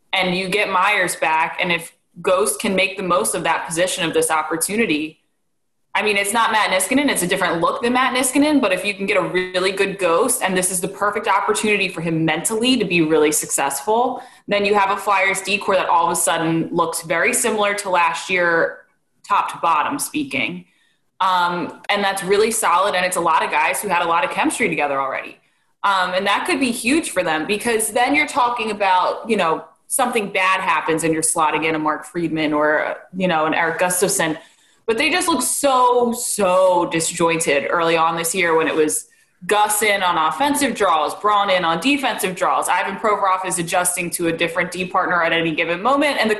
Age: 20-39